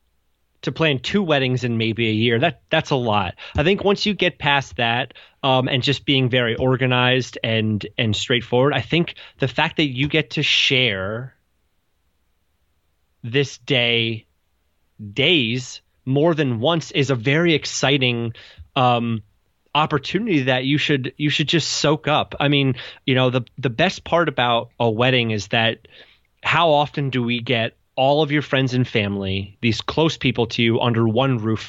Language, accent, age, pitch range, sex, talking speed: English, American, 30-49, 115-145 Hz, male, 170 wpm